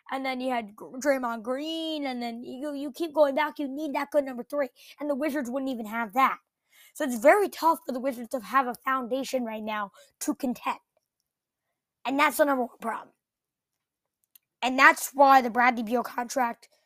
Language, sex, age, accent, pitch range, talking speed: English, female, 20-39, American, 235-295 Hz, 190 wpm